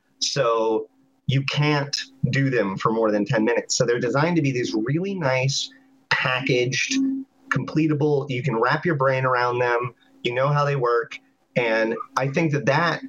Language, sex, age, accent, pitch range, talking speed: English, male, 30-49, American, 125-175 Hz, 170 wpm